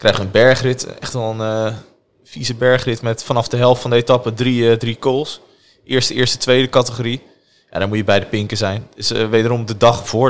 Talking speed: 225 wpm